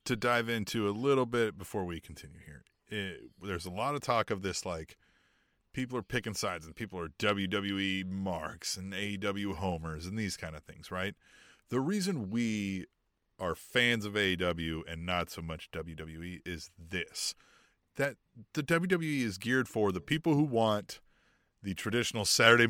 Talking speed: 165 wpm